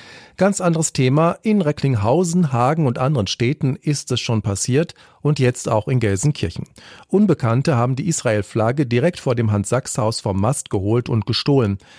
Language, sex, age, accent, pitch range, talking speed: German, male, 40-59, German, 110-150 Hz, 155 wpm